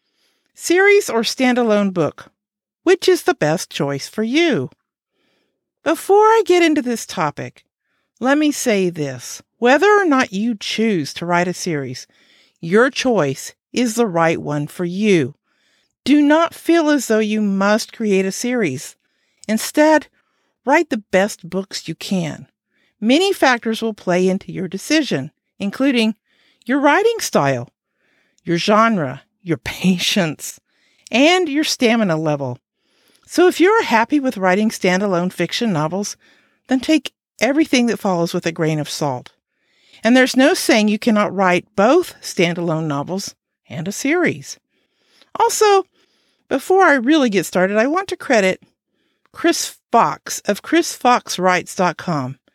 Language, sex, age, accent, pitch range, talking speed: English, female, 50-69, American, 180-290 Hz, 135 wpm